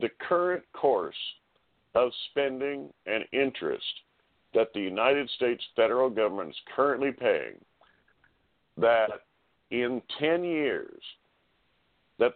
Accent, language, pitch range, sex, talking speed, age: American, English, 100-145 Hz, male, 100 wpm, 50-69